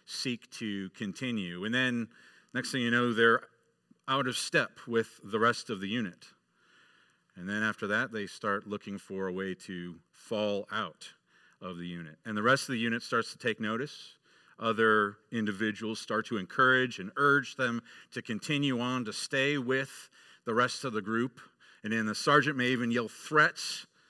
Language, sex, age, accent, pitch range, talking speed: English, male, 40-59, American, 95-125 Hz, 180 wpm